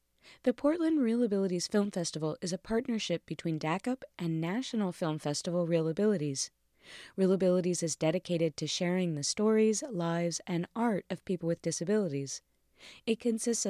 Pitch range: 165-210 Hz